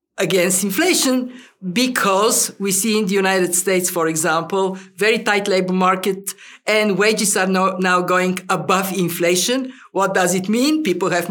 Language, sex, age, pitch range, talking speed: English, female, 50-69, 180-240 Hz, 155 wpm